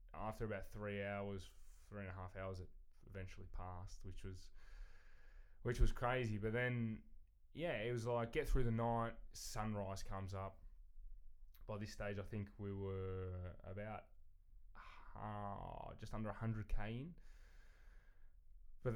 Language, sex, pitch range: English, male, 90-115 Hz